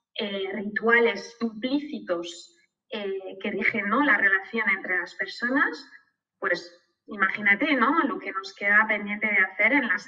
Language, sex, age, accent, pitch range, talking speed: Spanish, female, 20-39, Spanish, 200-265 Hz, 145 wpm